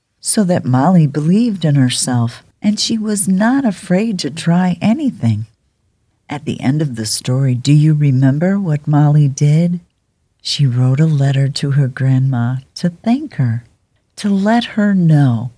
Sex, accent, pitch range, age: female, American, 120-175 Hz, 50-69